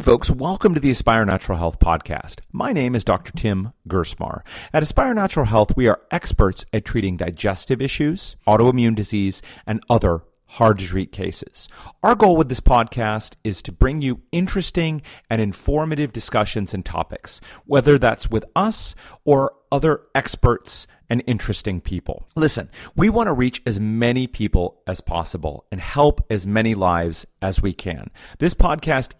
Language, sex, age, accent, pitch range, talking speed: English, male, 40-59, American, 95-135 Hz, 160 wpm